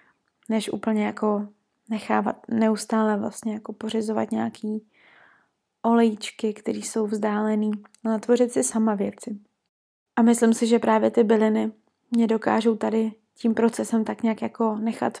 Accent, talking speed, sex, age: native, 135 wpm, female, 20-39